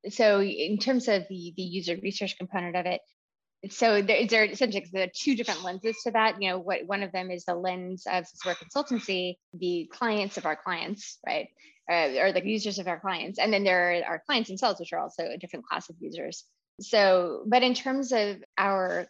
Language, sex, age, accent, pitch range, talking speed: English, female, 20-39, American, 180-210 Hz, 215 wpm